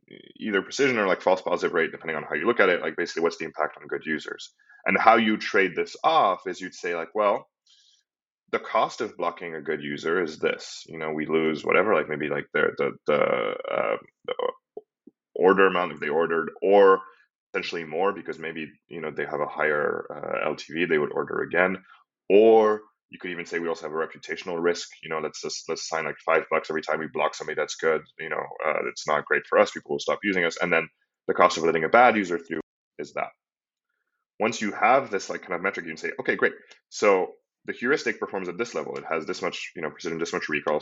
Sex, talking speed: male, 230 wpm